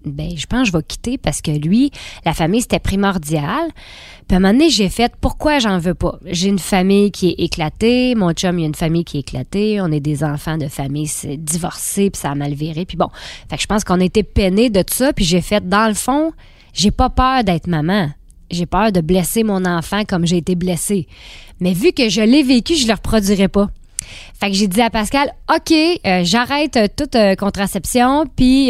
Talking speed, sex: 225 wpm, female